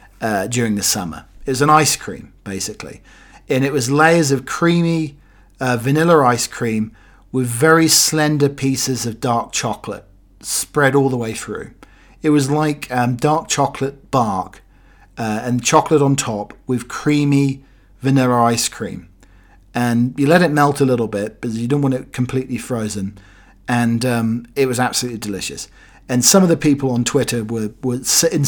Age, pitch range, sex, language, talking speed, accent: 40-59, 110-140 Hz, male, English, 170 wpm, British